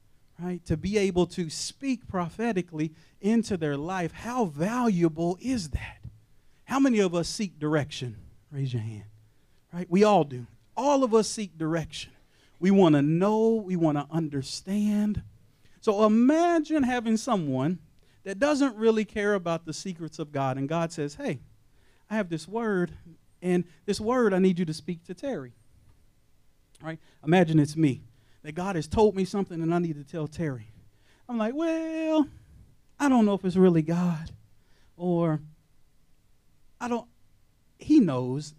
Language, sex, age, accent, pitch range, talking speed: English, male, 40-59, American, 135-210 Hz, 160 wpm